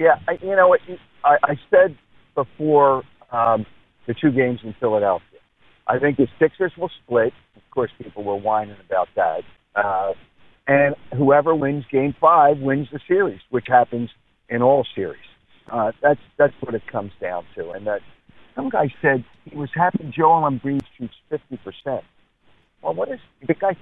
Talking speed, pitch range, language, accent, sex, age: 170 wpm, 115-145 Hz, English, American, male, 50-69